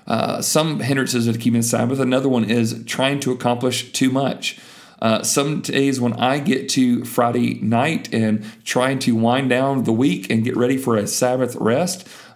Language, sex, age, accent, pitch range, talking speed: English, male, 40-59, American, 115-140 Hz, 180 wpm